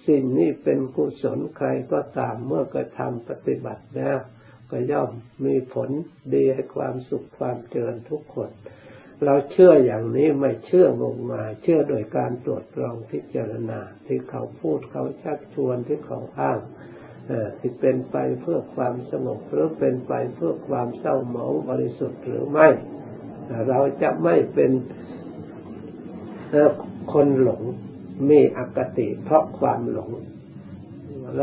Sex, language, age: male, Thai, 60-79